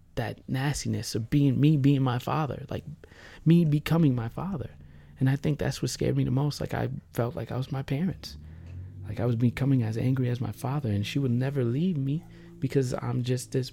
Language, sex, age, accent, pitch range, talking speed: English, male, 20-39, American, 105-130 Hz, 215 wpm